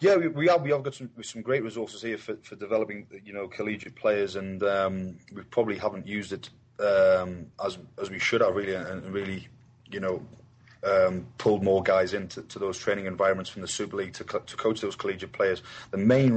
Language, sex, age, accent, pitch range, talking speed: English, male, 20-39, British, 95-120 Hz, 215 wpm